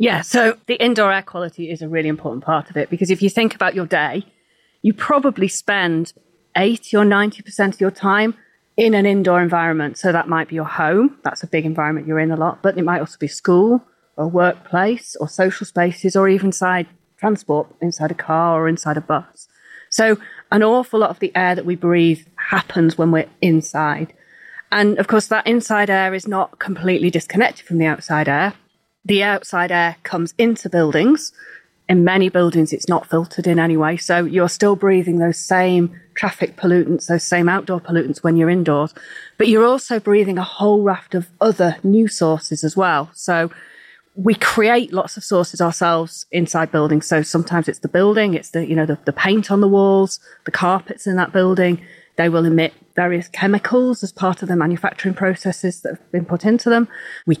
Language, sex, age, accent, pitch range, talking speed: English, female, 30-49, British, 165-205 Hz, 195 wpm